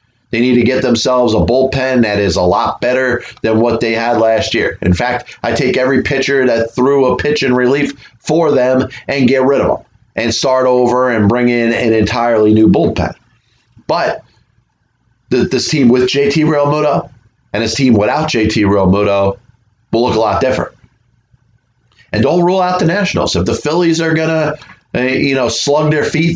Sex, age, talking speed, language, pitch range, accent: male, 30-49, 185 wpm, English, 115-145 Hz, American